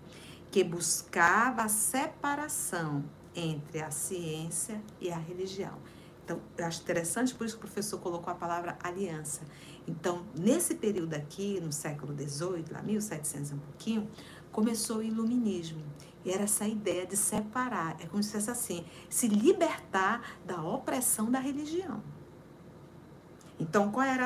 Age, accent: 50-69, Brazilian